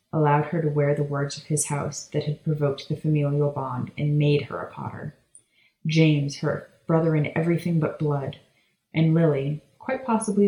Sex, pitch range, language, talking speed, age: female, 145-165 Hz, English, 180 wpm, 30-49